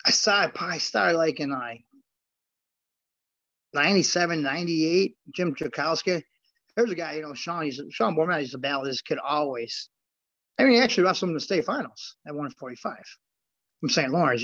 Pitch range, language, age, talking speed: 145-180 Hz, English, 30-49, 175 wpm